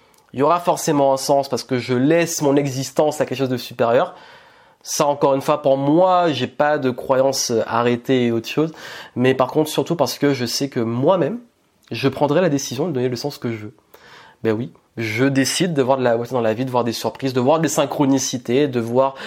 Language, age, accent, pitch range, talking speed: French, 20-39, French, 120-140 Hz, 235 wpm